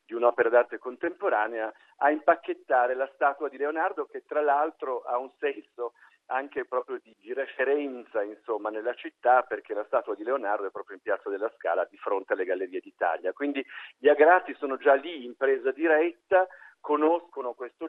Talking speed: 170 wpm